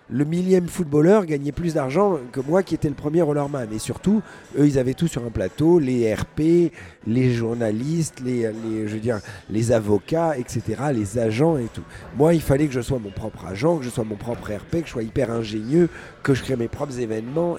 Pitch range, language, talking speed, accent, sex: 125-170 Hz, French, 220 wpm, French, male